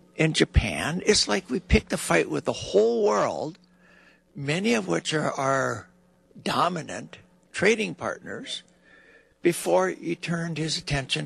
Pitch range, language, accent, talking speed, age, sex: 125-180 Hz, English, American, 135 wpm, 60-79, male